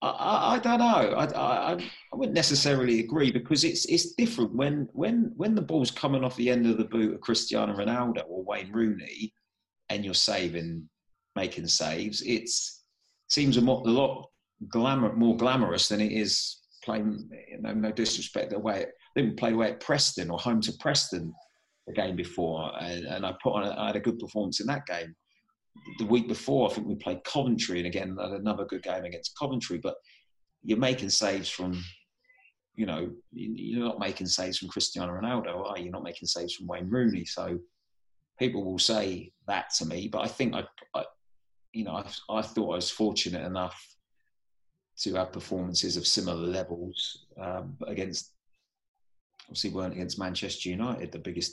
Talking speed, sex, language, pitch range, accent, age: 185 wpm, male, English, 90-130 Hz, British, 30-49